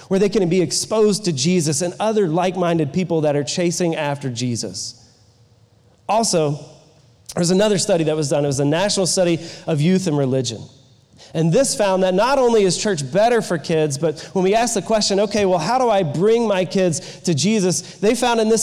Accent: American